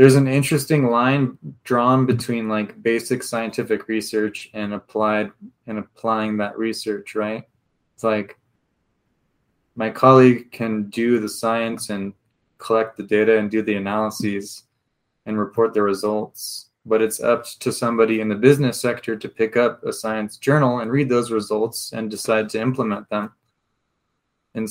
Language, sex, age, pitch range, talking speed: English, male, 20-39, 105-120 Hz, 150 wpm